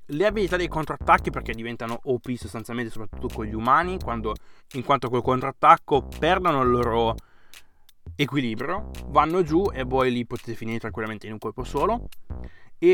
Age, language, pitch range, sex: 20-39, Italian, 115-150 Hz, male